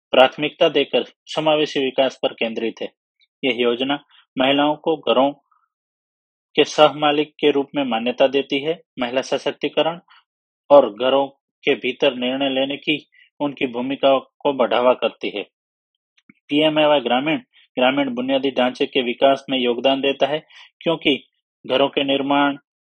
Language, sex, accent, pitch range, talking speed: Hindi, male, native, 130-150 Hz, 130 wpm